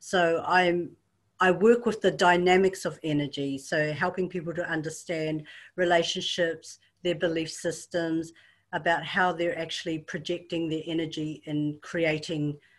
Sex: female